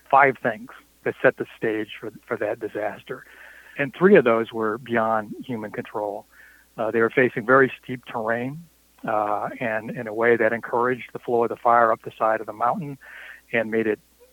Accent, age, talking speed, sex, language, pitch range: American, 60-79, 195 wpm, male, English, 110-130 Hz